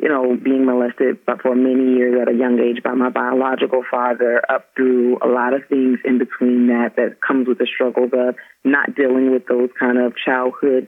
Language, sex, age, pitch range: English, female, 30-49, 125-135 Hz